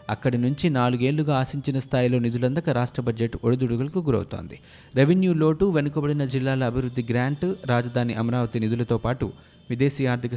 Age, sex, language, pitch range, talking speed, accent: 20-39, male, Telugu, 115-140 Hz, 125 wpm, native